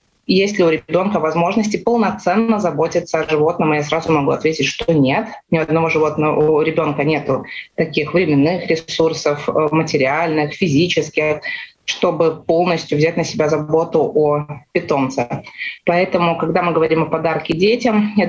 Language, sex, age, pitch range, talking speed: Russian, female, 20-39, 150-170 Hz, 140 wpm